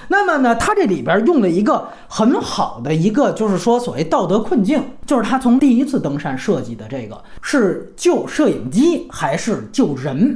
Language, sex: Chinese, male